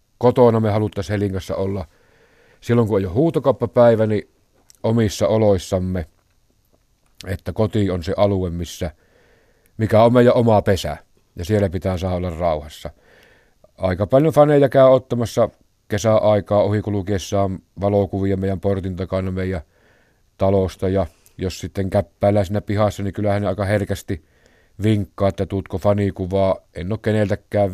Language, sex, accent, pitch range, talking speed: Finnish, male, native, 95-110 Hz, 135 wpm